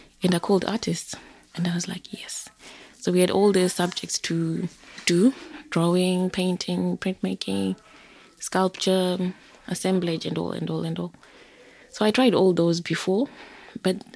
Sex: female